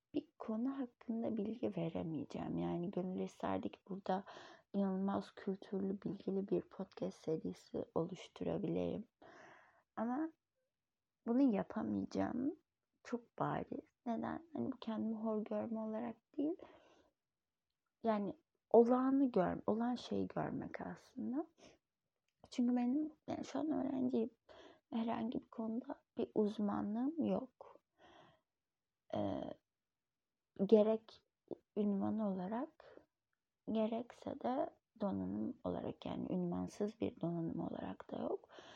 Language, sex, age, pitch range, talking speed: Turkish, female, 30-49, 195-300 Hz, 100 wpm